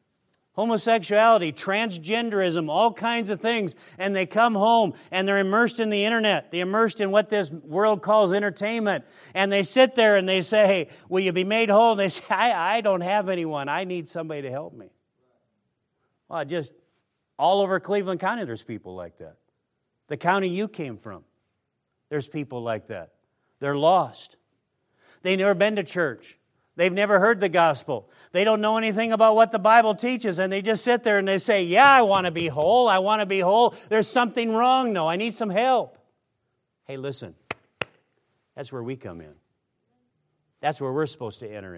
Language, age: English, 50-69